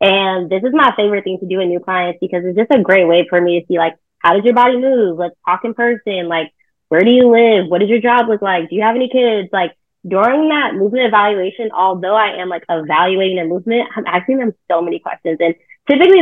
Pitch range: 175-230 Hz